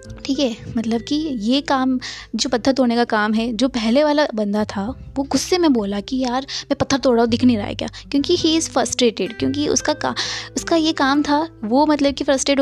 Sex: female